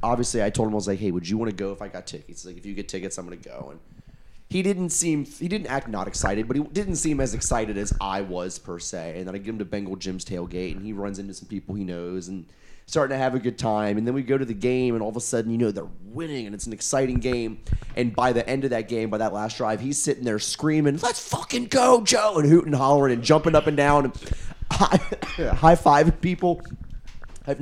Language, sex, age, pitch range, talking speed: English, male, 30-49, 95-135 Hz, 265 wpm